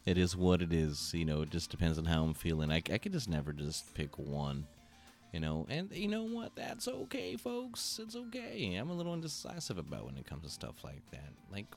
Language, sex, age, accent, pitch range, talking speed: English, male, 30-49, American, 80-130 Hz, 235 wpm